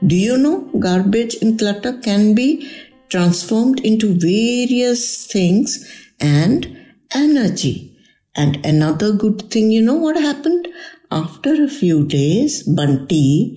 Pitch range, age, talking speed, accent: 155-240 Hz, 60-79, 120 wpm, Indian